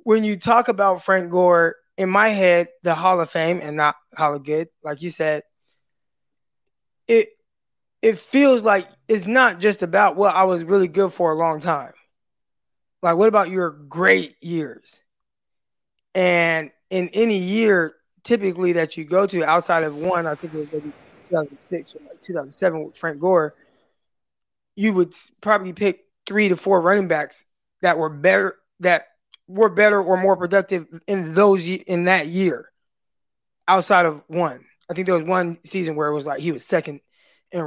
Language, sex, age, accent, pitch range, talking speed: English, male, 20-39, American, 165-210 Hz, 170 wpm